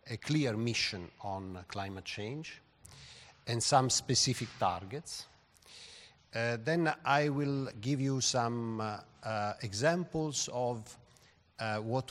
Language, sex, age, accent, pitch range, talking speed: English, male, 50-69, Italian, 105-130 Hz, 115 wpm